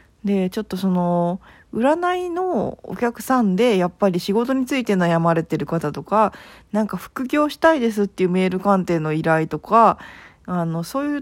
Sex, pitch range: female, 165-230 Hz